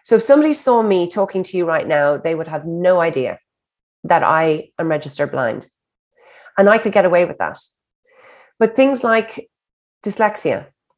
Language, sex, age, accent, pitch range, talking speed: English, female, 30-49, Irish, 185-235 Hz, 170 wpm